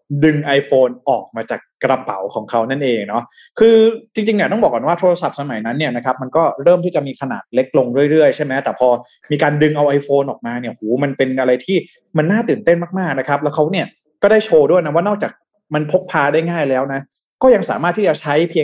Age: 20-39